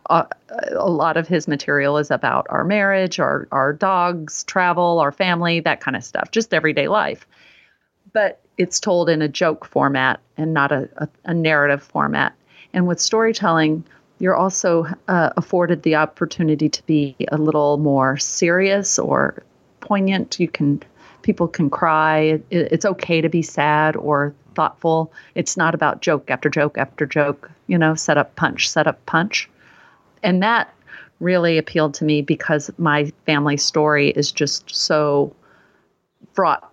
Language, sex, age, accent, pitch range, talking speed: English, female, 40-59, American, 150-195 Hz, 160 wpm